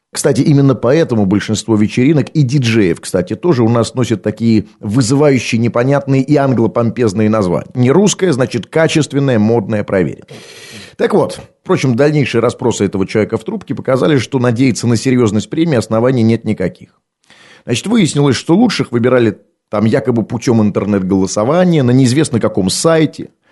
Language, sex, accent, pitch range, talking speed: Russian, male, native, 110-150 Hz, 140 wpm